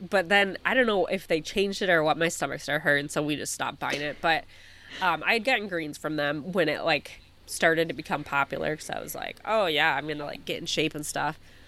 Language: English